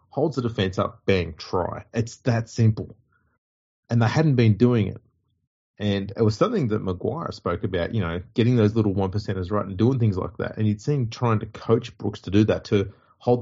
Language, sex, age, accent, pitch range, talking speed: English, male, 30-49, Australian, 100-115 Hz, 215 wpm